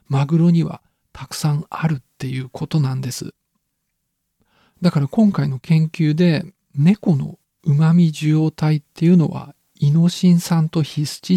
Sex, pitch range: male, 145-180 Hz